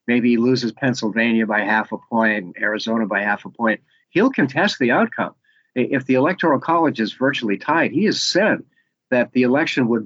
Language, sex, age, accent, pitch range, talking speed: English, male, 50-69, American, 115-150 Hz, 185 wpm